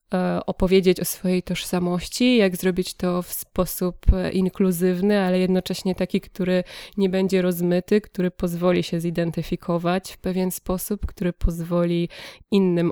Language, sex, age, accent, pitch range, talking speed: Polish, female, 20-39, native, 165-185 Hz, 125 wpm